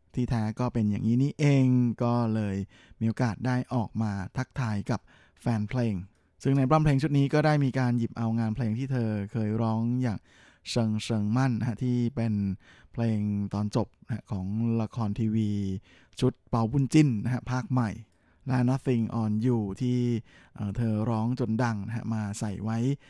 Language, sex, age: Thai, male, 20-39